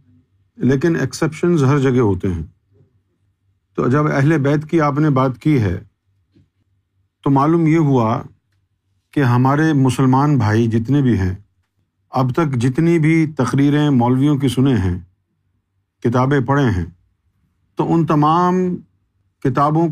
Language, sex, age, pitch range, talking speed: Urdu, male, 50-69, 100-150 Hz, 130 wpm